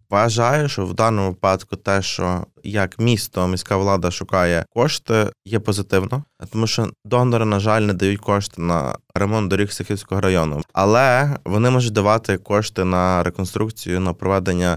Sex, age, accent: male, 20-39, native